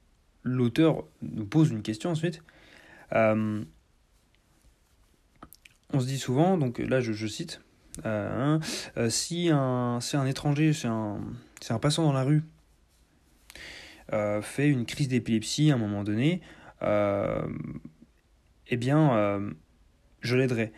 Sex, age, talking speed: male, 30-49, 135 wpm